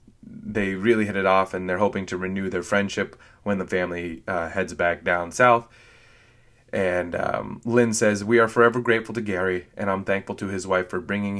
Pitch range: 95-120 Hz